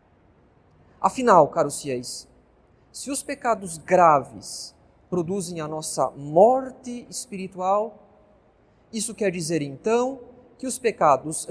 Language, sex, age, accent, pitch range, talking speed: Portuguese, male, 40-59, Brazilian, 155-235 Hz, 100 wpm